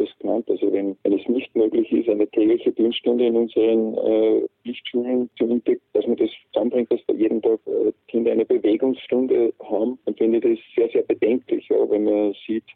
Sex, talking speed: male, 190 wpm